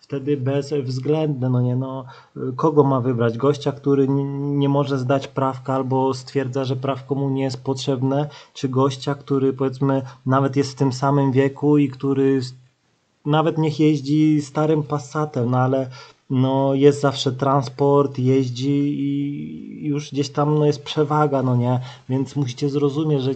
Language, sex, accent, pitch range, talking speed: Polish, male, native, 130-150 Hz, 150 wpm